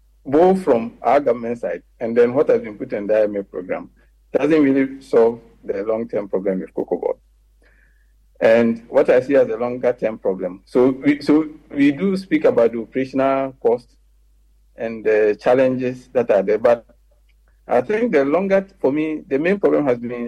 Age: 50-69